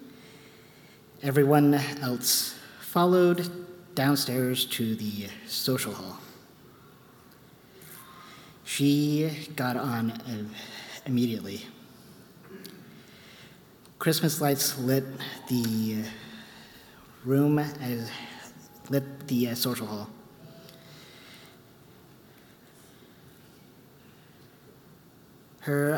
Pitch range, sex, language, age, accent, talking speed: 115-140 Hz, male, English, 50-69, American, 60 wpm